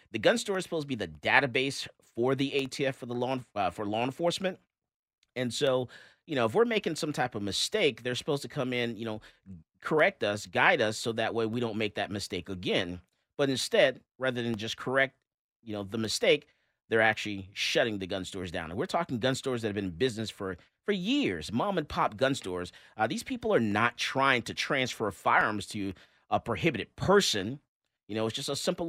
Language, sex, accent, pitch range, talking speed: English, male, American, 110-145 Hz, 215 wpm